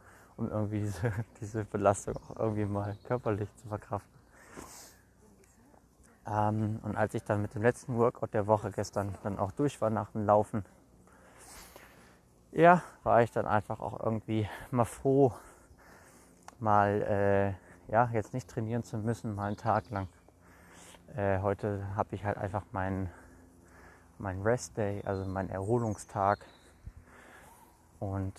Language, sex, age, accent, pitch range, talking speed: German, male, 20-39, German, 85-115 Hz, 135 wpm